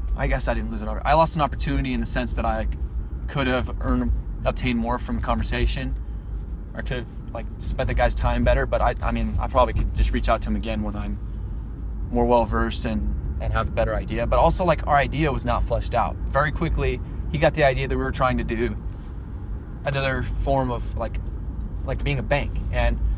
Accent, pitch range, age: American, 100-130 Hz, 20-39